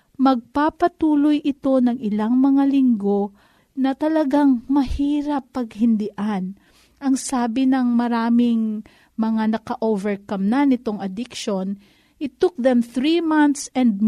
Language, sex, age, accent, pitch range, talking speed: Filipino, female, 40-59, native, 220-280 Hz, 105 wpm